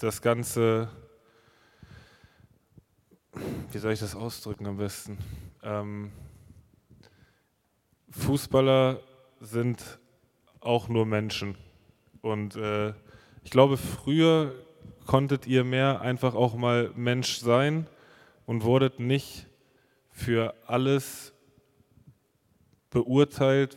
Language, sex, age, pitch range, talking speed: German, male, 20-39, 115-135 Hz, 85 wpm